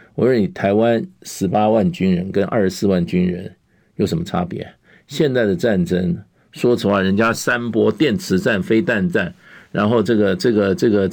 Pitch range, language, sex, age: 95-130 Hz, Chinese, male, 50-69